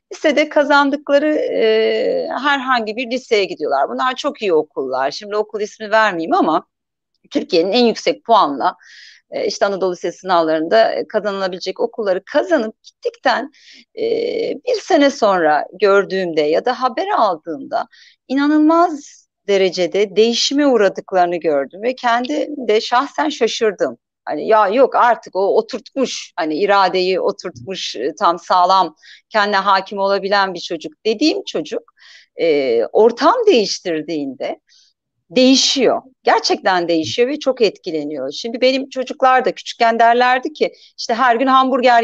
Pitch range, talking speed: 190-295 Hz, 125 wpm